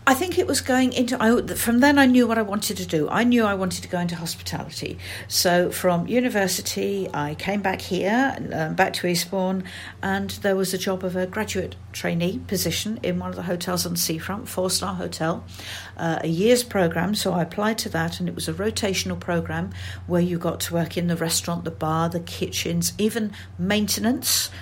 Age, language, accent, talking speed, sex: 50-69, English, British, 200 wpm, female